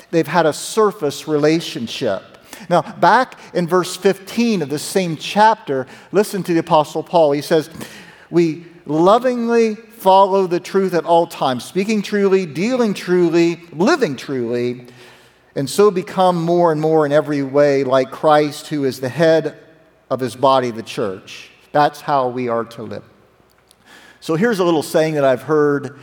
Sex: male